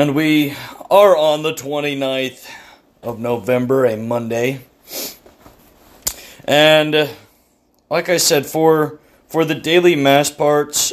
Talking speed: 110 wpm